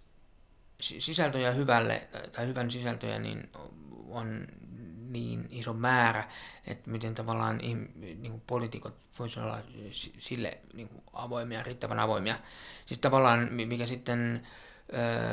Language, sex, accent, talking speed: Finnish, male, native, 105 wpm